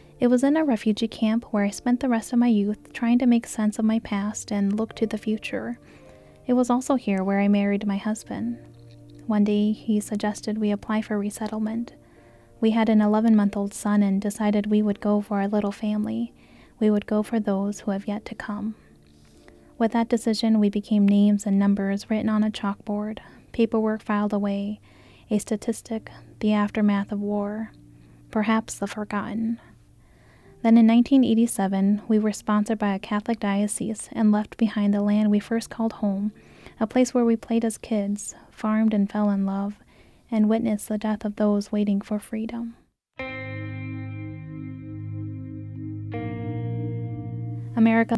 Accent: American